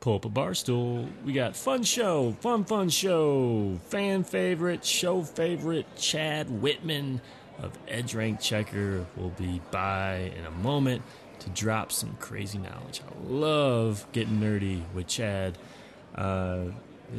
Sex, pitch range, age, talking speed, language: male, 100-130 Hz, 20-39, 140 wpm, English